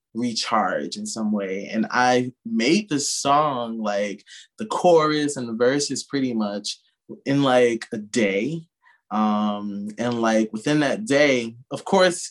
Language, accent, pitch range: English, American, 115-165 Hz